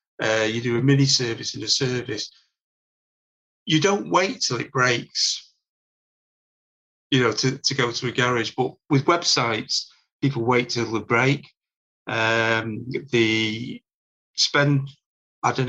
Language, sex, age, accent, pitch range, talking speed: English, male, 40-59, British, 120-140 Hz, 140 wpm